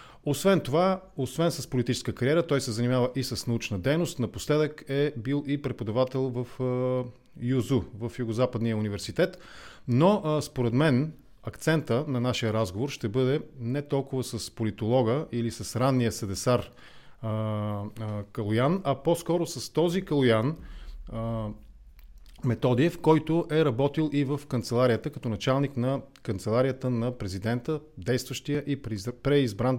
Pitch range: 115-150 Hz